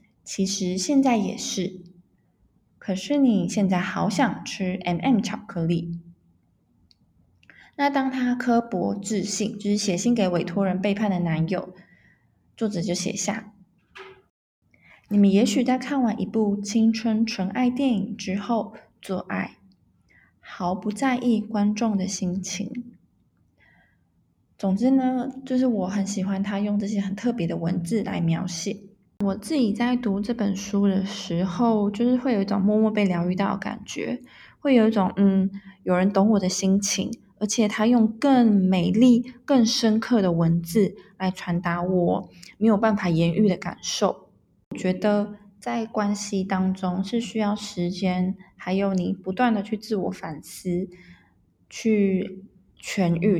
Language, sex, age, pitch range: Chinese, female, 20-39, 185-225 Hz